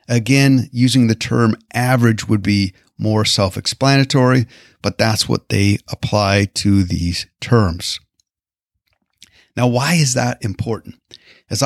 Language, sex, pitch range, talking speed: English, male, 105-130 Hz, 120 wpm